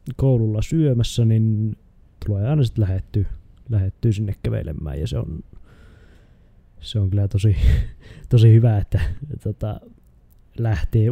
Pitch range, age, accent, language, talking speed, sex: 90-120 Hz, 20-39, native, Finnish, 125 wpm, male